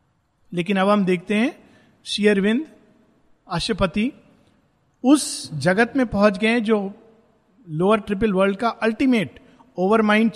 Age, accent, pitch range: 50-69, native, 170-225 Hz